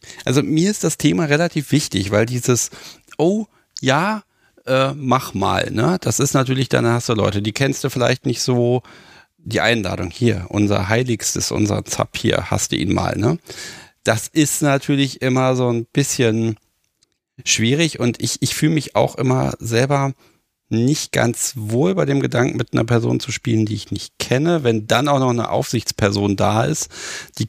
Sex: male